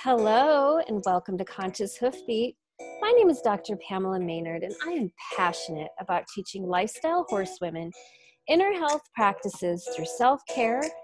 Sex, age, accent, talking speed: female, 30-49, American, 135 wpm